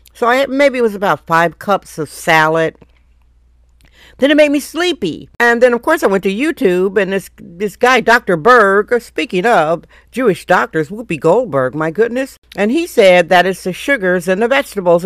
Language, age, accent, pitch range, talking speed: English, 50-69, American, 175-220 Hz, 195 wpm